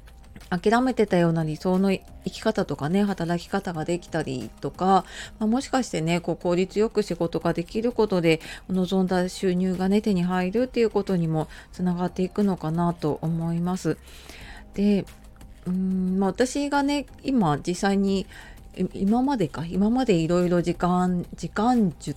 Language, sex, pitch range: Japanese, female, 160-205 Hz